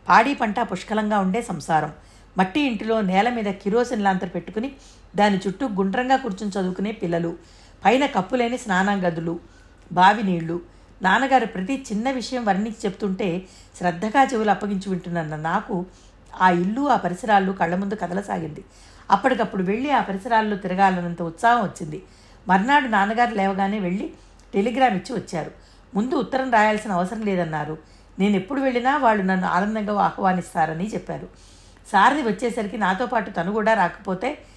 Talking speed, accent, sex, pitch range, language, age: 130 wpm, native, female, 180-230 Hz, Telugu, 50-69